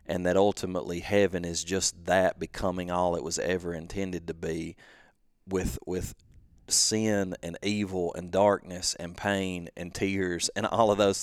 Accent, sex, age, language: American, male, 40-59, English